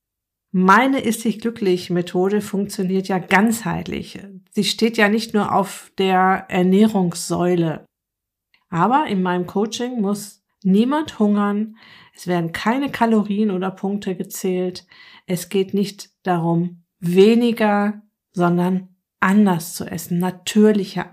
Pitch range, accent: 180-210 Hz, German